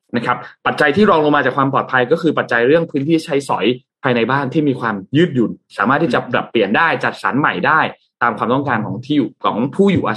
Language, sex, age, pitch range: Thai, male, 20-39, 120-160 Hz